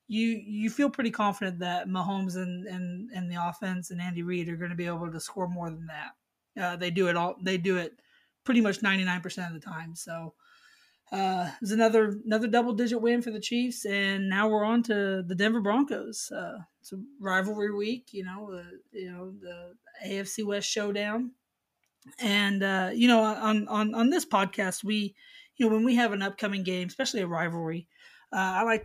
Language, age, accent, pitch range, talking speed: English, 20-39, American, 180-215 Hz, 200 wpm